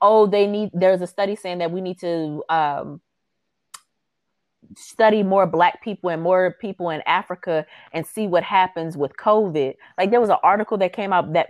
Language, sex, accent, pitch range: English, female, American, 170-210 Hz